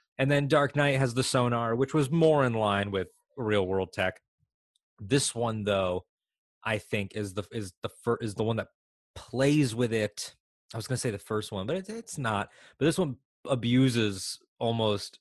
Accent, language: American, English